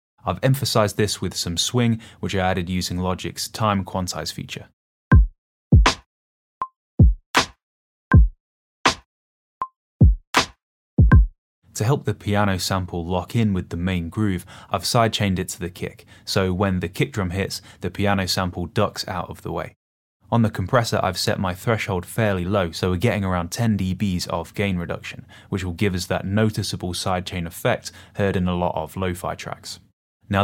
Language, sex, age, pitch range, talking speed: English, male, 10-29, 90-110 Hz, 155 wpm